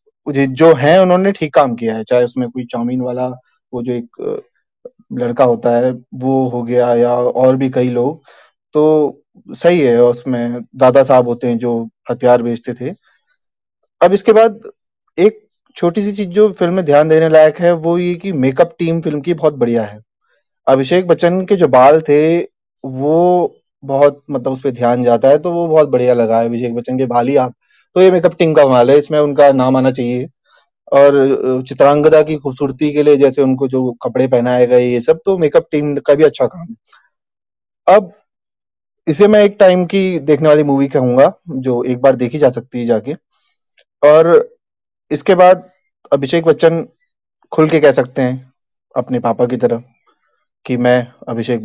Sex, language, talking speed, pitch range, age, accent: male, Hindi, 180 wpm, 125-170 Hz, 20-39, native